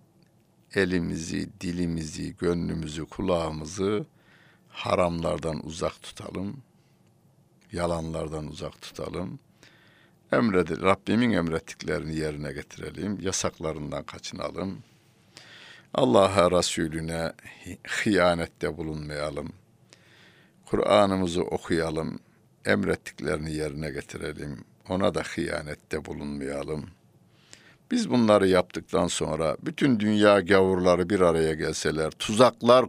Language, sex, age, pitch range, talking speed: Turkish, male, 60-79, 80-100 Hz, 75 wpm